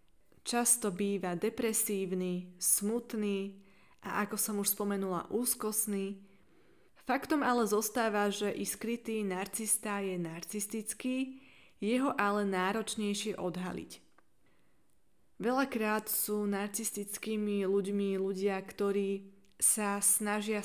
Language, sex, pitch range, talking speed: Slovak, female, 190-220 Hz, 90 wpm